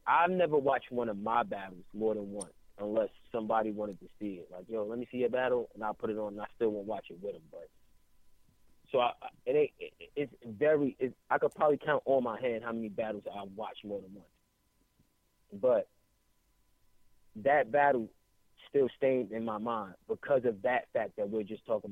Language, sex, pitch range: English, male, 105-125 Hz